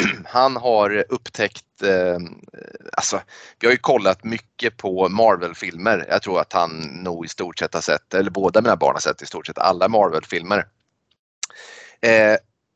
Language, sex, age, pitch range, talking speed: Swedish, male, 30-49, 105-135 Hz, 160 wpm